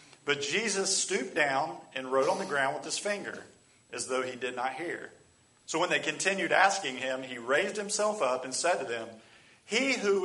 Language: English